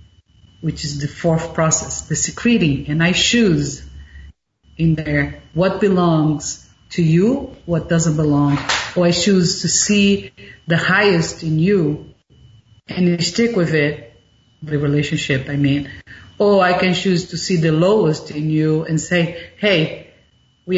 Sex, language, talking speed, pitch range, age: female, English, 145 wpm, 145-175 Hz, 40-59